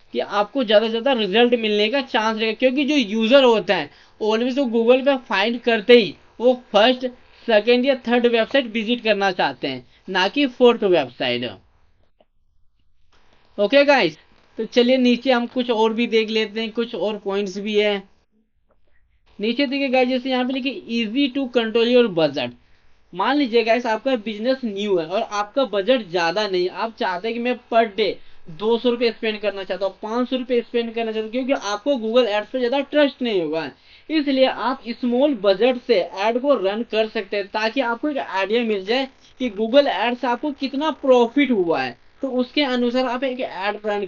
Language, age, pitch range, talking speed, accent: English, 20-39, 205-255 Hz, 140 wpm, Indian